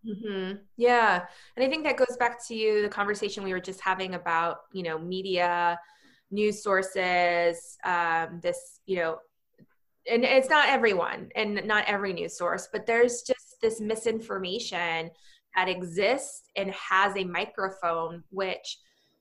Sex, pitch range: female, 180-235 Hz